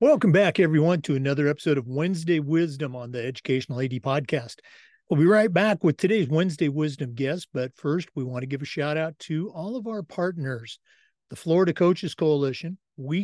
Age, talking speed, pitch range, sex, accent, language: 50-69, 190 wpm, 135-180 Hz, male, American, English